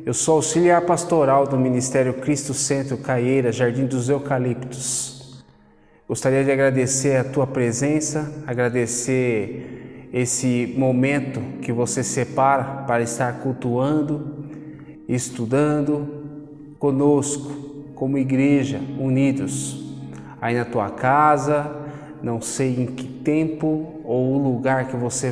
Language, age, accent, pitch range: Portuguese, 20-39, Brazilian, 125-145 Hz